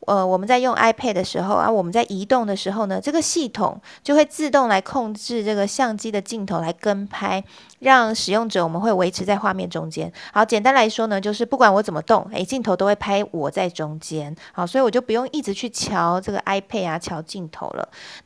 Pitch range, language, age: 190-245 Hz, Chinese, 20-39